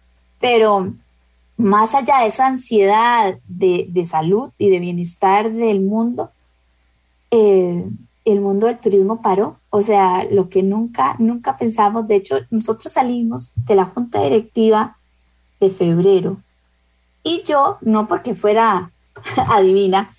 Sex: female